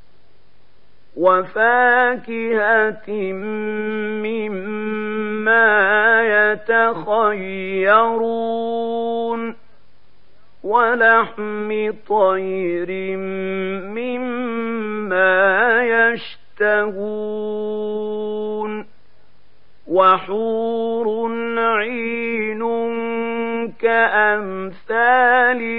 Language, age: Arabic, 50-69